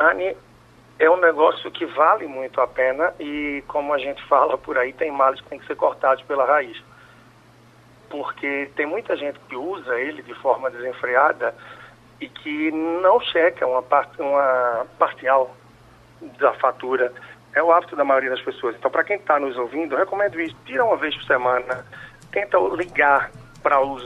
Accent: Brazilian